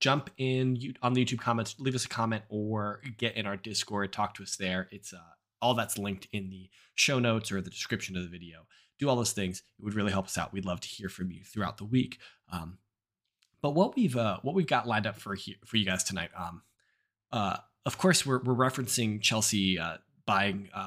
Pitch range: 100-125 Hz